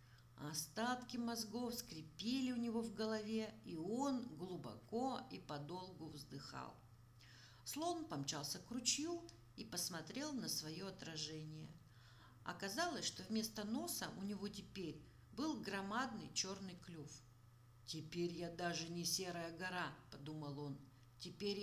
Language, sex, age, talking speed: Russian, female, 50-69, 120 wpm